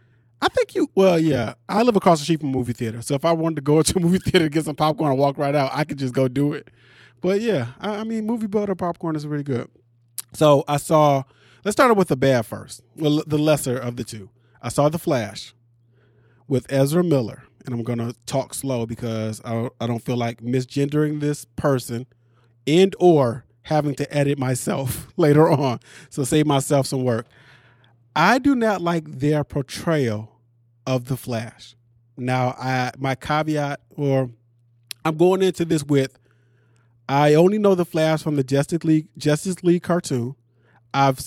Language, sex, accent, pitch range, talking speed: English, male, American, 120-165 Hz, 190 wpm